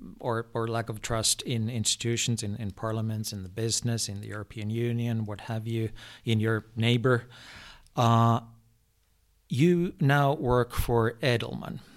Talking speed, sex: 145 wpm, male